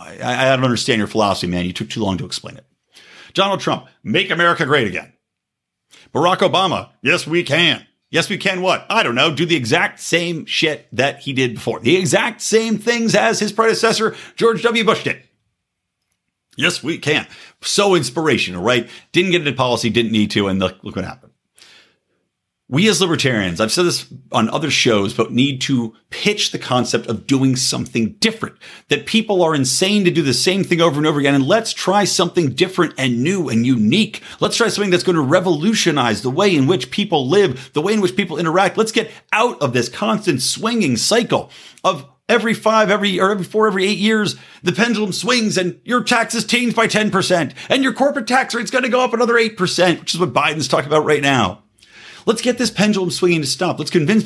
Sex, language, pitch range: male, English, 140-215 Hz